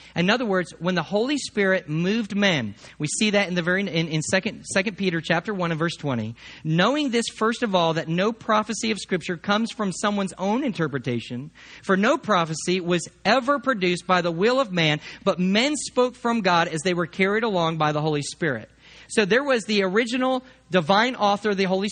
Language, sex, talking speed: English, male, 205 wpm